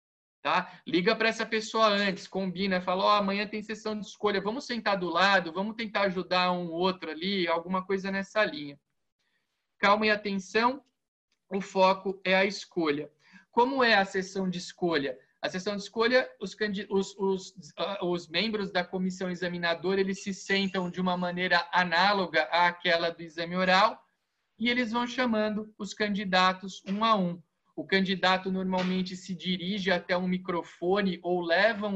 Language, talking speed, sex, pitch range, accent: Portuguese, 160 wpm, male, 180-215 Hz, Brazilian